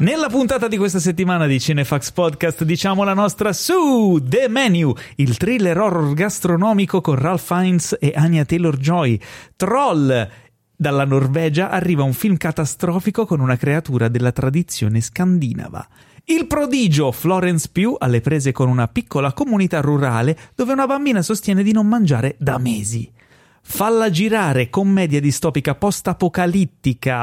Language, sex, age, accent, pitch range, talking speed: Italian, male, 30-49, native, 135-200 Hz, 135 wpm